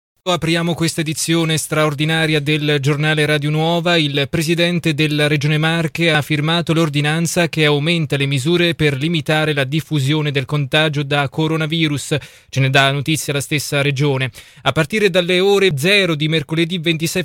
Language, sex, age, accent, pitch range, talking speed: Italian, male, 20-39, native, 145-170 Hz, 150 wpm